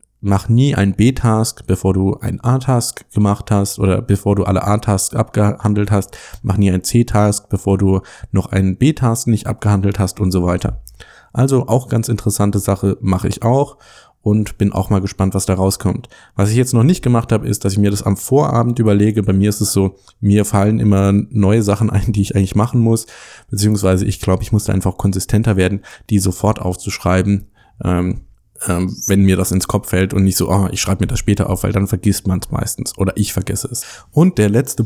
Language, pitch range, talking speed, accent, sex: German, 95-120 Hz, 205 wpm, German, male